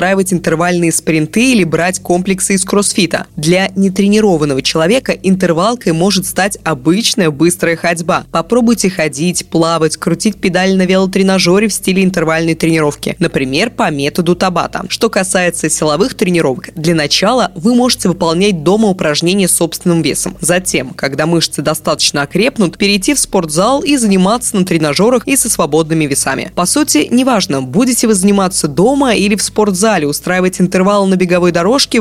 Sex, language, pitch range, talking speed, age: female, Russian, 165-205 Hz, 140 wpm, 20-39